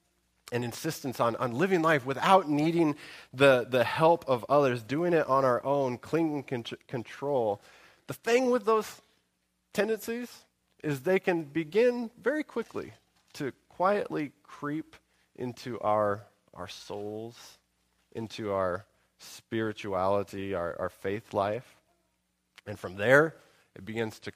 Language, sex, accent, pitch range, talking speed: English, male, American, 105-150 Hz, 125 wpm